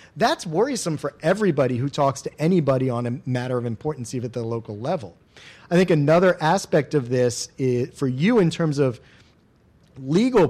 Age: 40-59